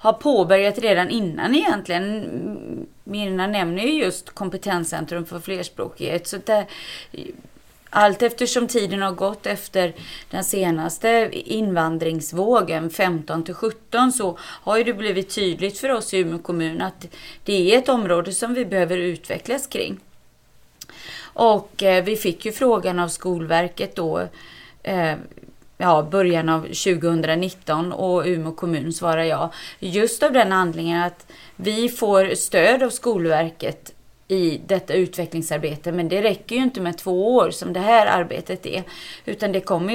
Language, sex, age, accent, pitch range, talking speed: Swedish, female, 30-49, native, 170-220 Hz, 140 wpm